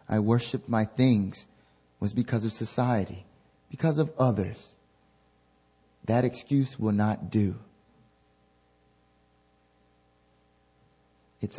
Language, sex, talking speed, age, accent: English, male, 90 wpm, 30-49, American